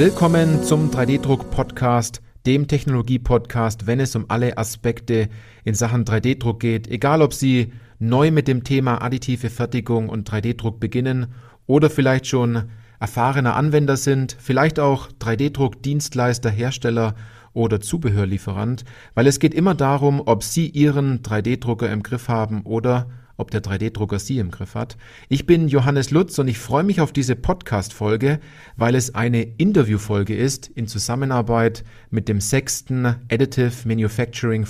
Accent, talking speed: German, 145 wpm